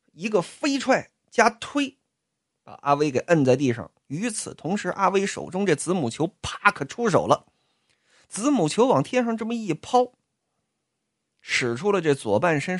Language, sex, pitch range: Chinese, male, 140-225 Hz